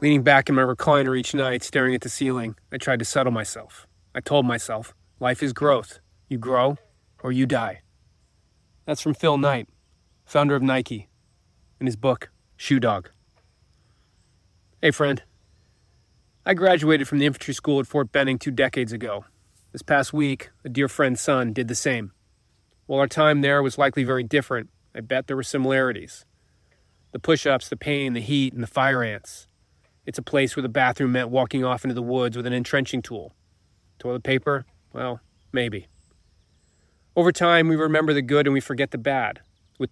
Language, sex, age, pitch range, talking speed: English, male, 30-49, 115-140 Hz, 175 wpm